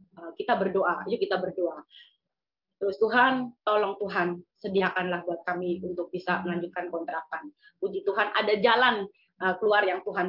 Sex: female